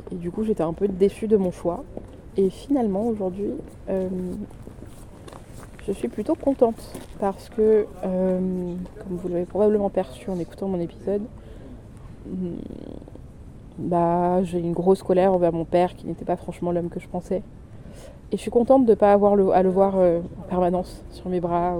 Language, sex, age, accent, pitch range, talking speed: French, female, 20-39, French, 175-210 Hz, 175 wpm